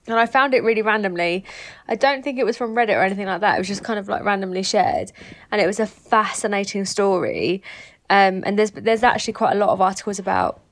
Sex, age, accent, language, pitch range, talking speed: female, 20-39, British, English, 185-215 Hz, 235 wpm